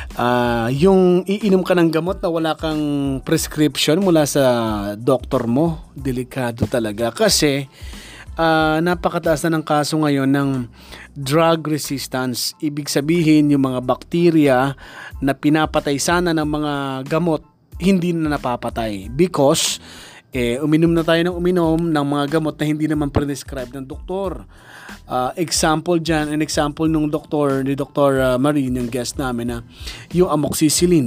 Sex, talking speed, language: male, 140 wpm, Filipino